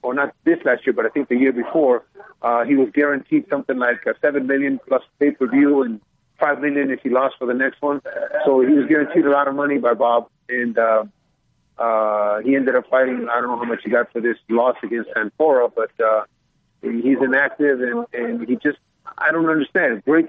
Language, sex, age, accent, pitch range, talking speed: English, male, 50-69, American, 120-150 Hz, 215 wpm